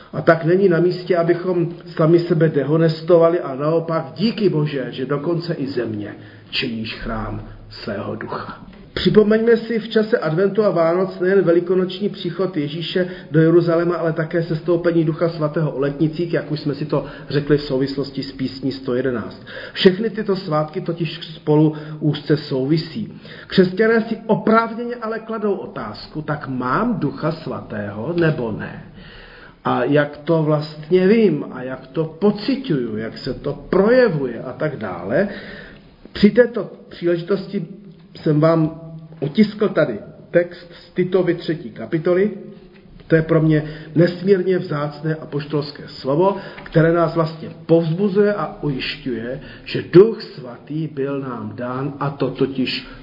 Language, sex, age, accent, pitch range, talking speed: Czech, male, 40-59, native, 145-185 Hz, 140 wpm